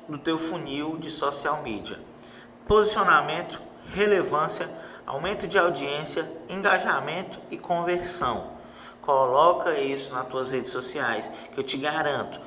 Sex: male